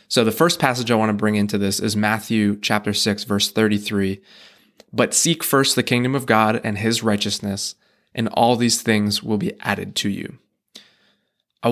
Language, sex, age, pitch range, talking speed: English, male, 20-39, 105-130 Hz, 185 wpm